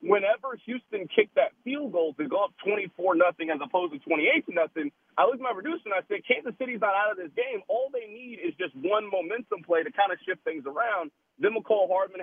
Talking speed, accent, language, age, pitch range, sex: 235 wpm, American, English, 40-59, 175-275 Hz, male